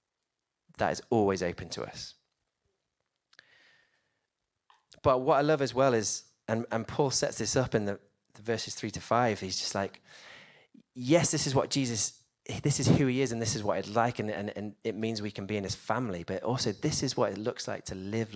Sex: male